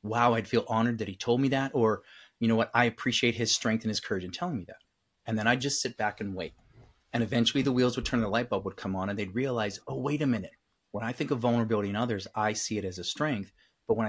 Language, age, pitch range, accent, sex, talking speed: English, 30-49, 110-125 Hz, American, male, 280 wpm